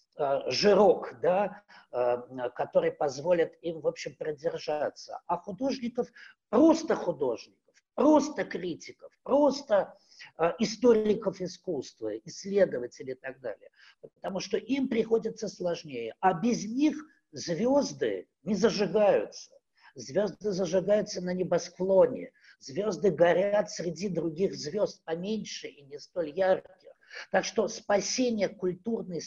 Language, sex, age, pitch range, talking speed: Russian, male, 50-69, 180-280 Hz, 105 wpm